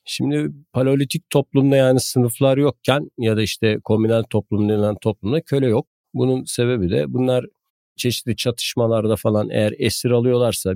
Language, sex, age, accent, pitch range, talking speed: Turkish, male, 50-69, native, 100-125 Hz, 140 wpm